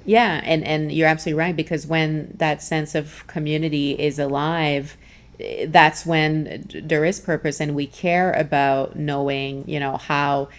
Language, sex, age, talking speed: English, female, 30-49, 155 wpm